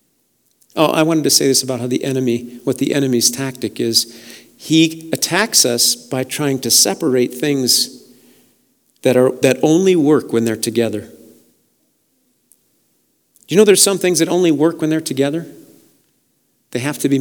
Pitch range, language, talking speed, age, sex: 160-255 Hz, English, 165 wpm, 50-69, male